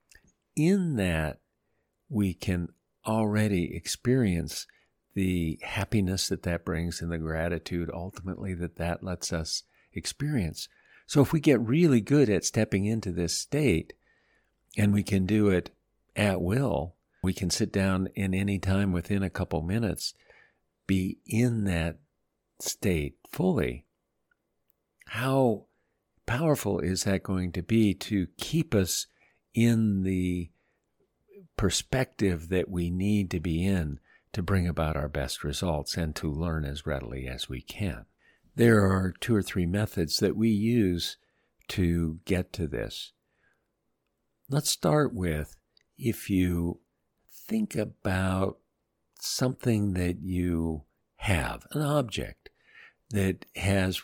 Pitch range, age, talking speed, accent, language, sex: 85-105 Hz, 50-69, 130 wpm, American, English, male